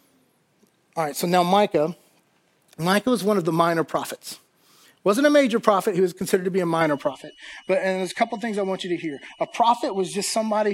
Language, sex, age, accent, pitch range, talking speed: English, male, 30-49, American, 165-205 Hz, 230 wpm